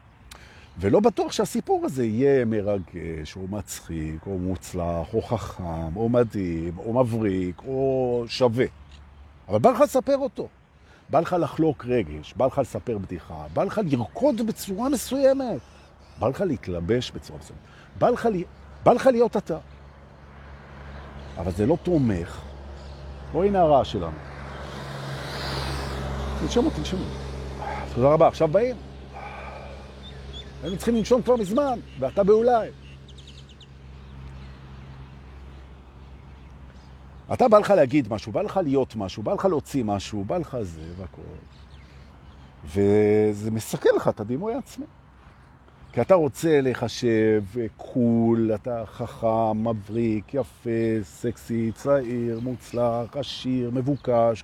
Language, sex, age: Hebrew, male, 50-69